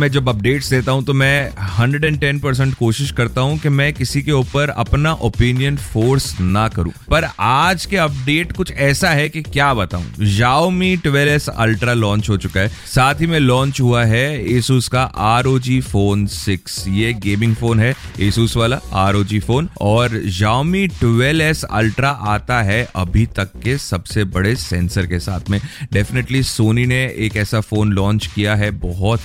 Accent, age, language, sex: native, 30-49, Hindi, male